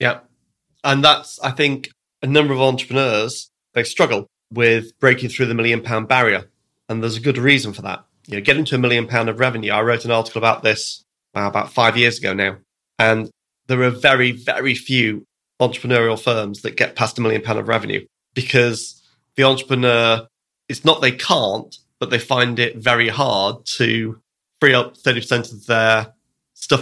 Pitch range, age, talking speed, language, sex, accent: 115-130 Hz, 30-49, 185 wpm, English, male, British